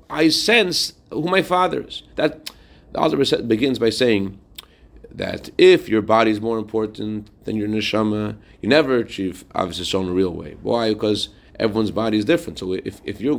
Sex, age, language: male, 40-59, English